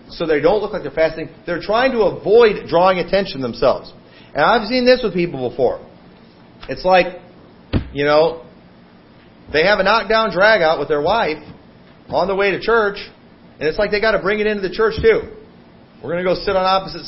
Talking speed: 205 wpm